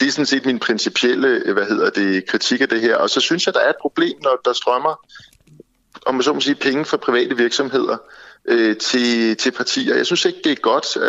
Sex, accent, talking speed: male, native, 235 wpm